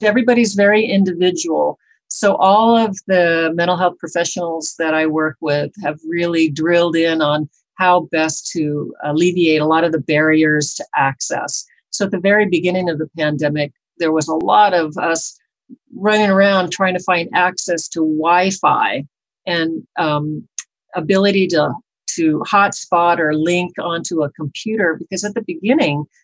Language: English